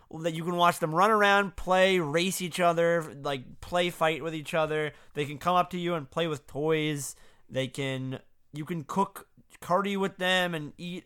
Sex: male